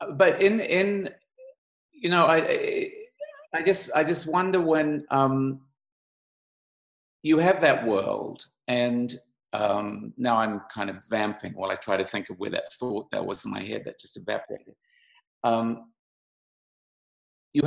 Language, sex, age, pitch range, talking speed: English, male, 50-69, 110-155 Hz, 145 wpm